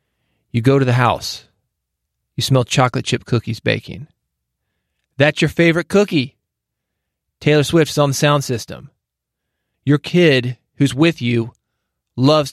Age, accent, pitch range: 30-49, American, 120-150 Hz